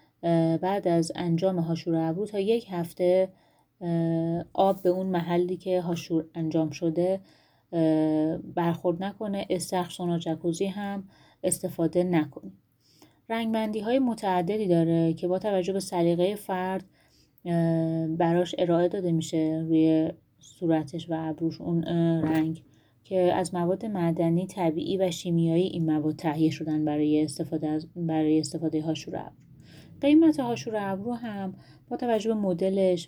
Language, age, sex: Persian, 30-49, female